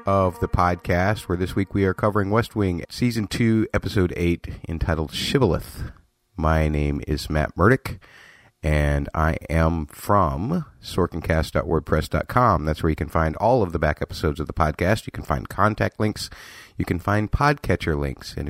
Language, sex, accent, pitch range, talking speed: English, male, American, 75-95 Hz, 165 wpm